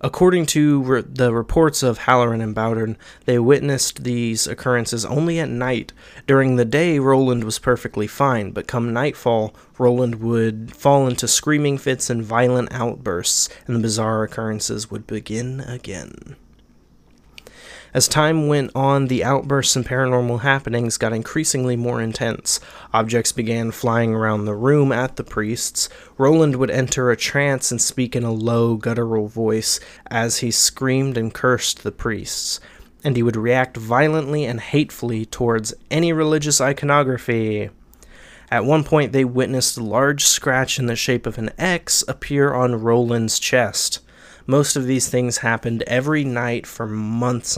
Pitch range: 115-135 Hz